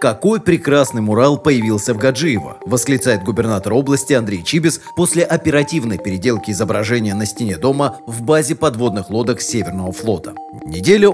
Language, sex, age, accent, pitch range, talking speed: Russian, male, 30-49, native, 115-150 Hz, 135 wpm